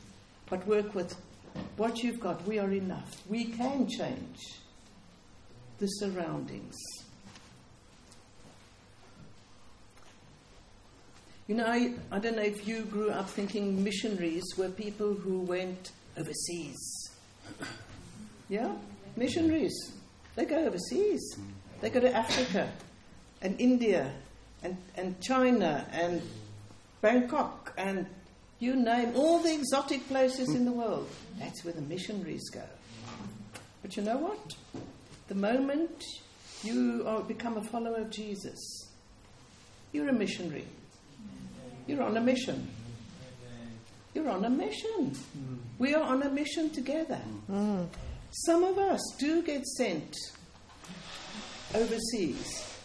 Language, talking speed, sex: English, 110 wpm, female